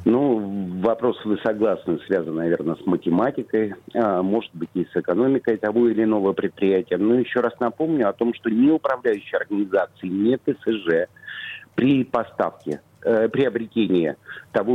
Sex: male